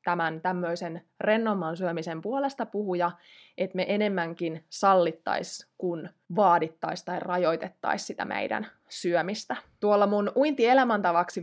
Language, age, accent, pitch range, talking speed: Finnish, 20-39, native, 170-205 Hz, 105 wpm